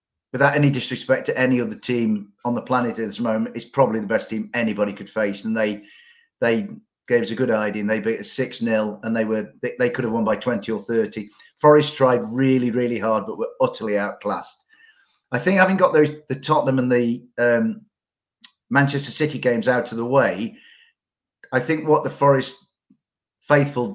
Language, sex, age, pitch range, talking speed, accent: English, male, 40-59, 115-140 Hz, 195 wpm, British